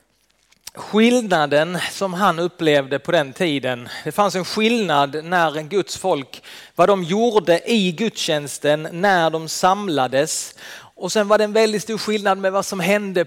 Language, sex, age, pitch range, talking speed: Swedish, male, 30-49, 160-210 Hz, 155 wpm